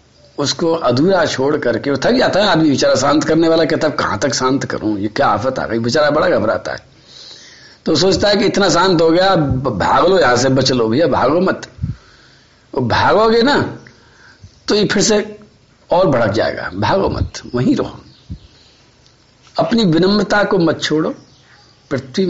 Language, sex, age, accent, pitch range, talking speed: Hindi, male, 50-69, native, 130-195 Hz, 80 wpm